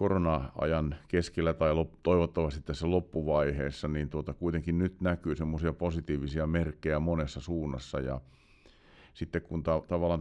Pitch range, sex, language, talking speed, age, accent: 70-85 Hz, male, Finnish, 125 wpm, 50-69, native